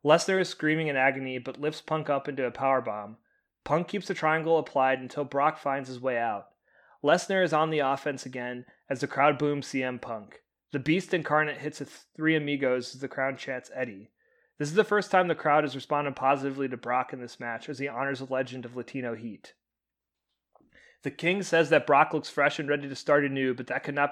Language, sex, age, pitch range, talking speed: English, male, 30-49, 130-155 Hz, 215 wpm